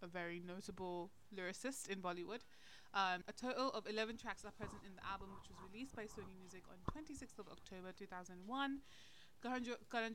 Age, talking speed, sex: 20-39, 165 wpm, female